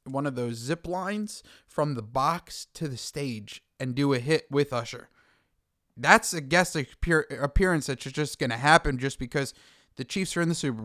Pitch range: 135-175 Hz